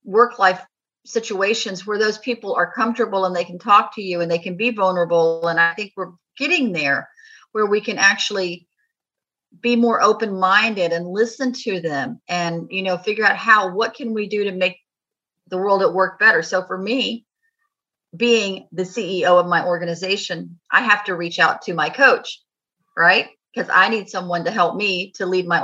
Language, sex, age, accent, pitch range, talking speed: English, female, 40-59, American, 170-215 Hz, 185 wpm